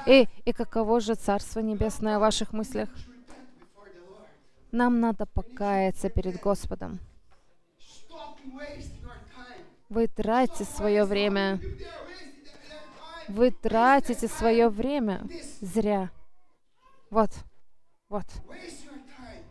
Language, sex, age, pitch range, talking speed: English, female, 20-39, 210-265 Hz, 75 wpm